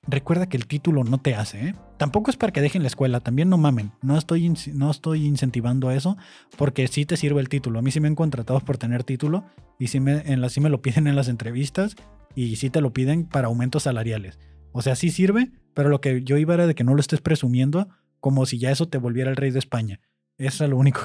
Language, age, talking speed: Spanish, 20-39, 255 wpm